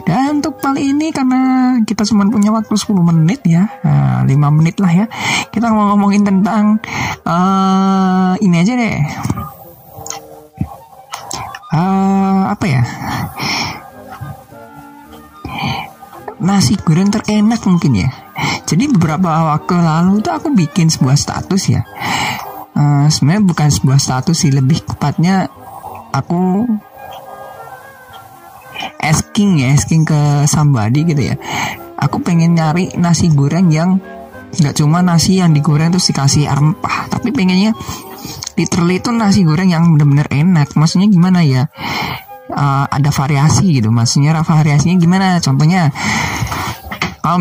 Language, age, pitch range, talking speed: Indonesian, 50-69, 145-190 Hz, 120 wpm